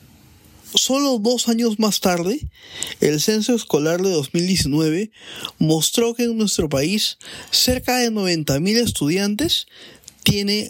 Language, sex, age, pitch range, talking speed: Spanish, male, 20-39, 155-210 Hz, 110 wpm